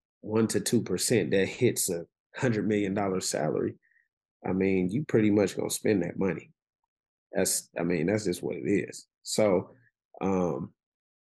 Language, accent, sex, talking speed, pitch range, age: English, American, male, 160 wpm, 95-115 Hz, 30-49